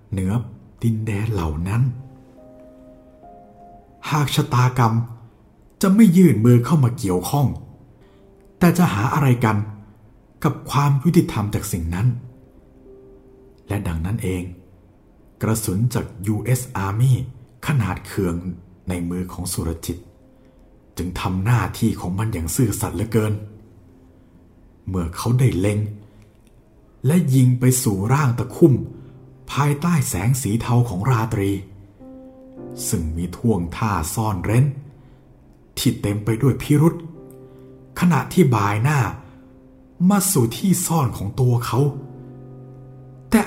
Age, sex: 60-79, male